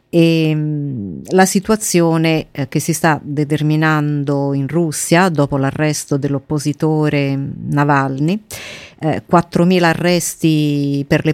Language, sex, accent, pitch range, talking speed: Italian, female, native, 145-170 Hz, 90 wpm